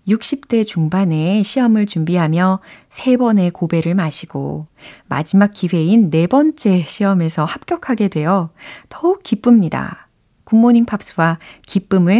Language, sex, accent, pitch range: Korean, female, native, 160-220 Hz